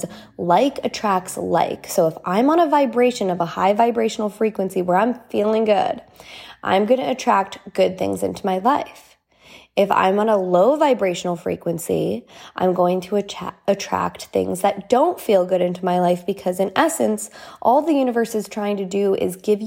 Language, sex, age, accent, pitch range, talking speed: English, female, 20-39, American, 190-255 Hz, 175 wpm